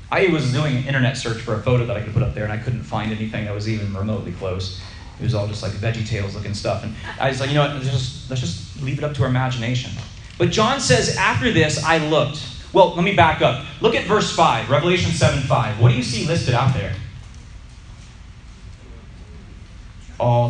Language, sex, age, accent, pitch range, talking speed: English, male, 30-49, American, 105-130 Hz, 225 wpm